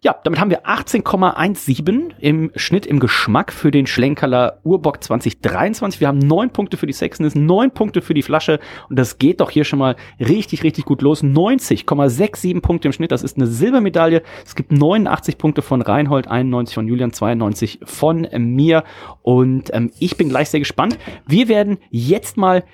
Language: German